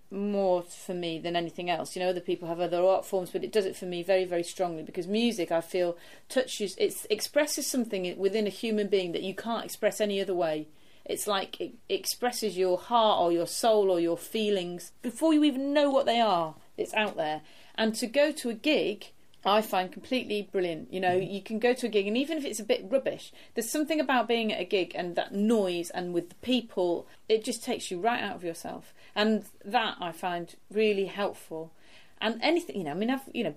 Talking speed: 225 wpm